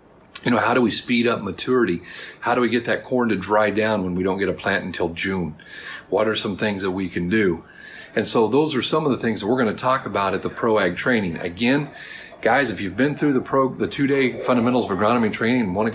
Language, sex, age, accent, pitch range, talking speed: English, male, 40-59, American, 95-115 Hz, 250 wpm